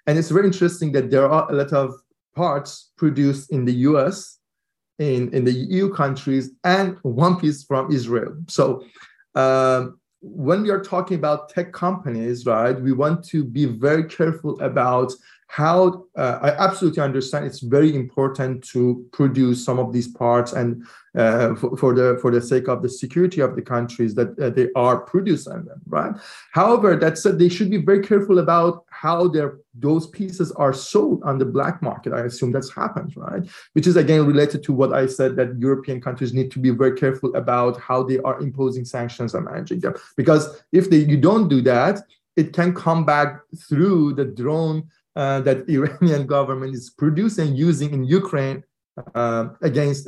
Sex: male